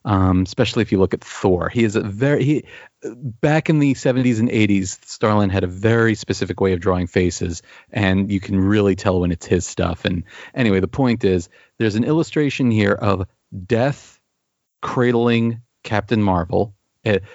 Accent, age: American, 40-59